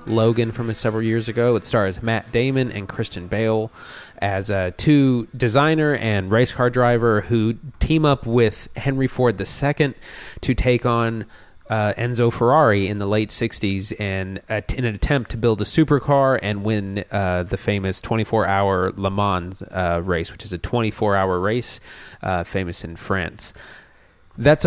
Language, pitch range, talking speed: English, 100-120 Hz, 155 wpm